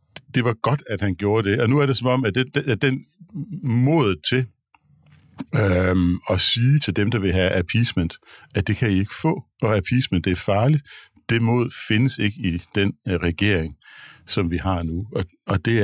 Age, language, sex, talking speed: 60-79, Danish, male, 200 wpm